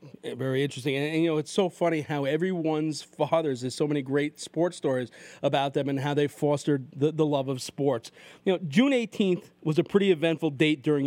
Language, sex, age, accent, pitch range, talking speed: English, male, 40-59, American, 150-195 Hz, 210 wpm